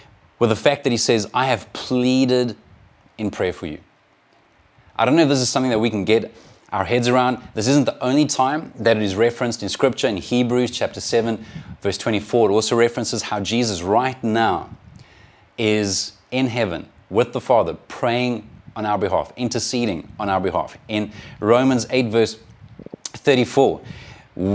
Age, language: 30-49, English